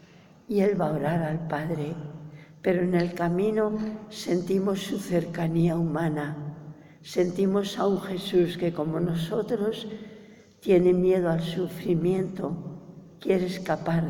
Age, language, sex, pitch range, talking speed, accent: 60-79, English, female, 160-190 Hz, 120 wpm, Spanish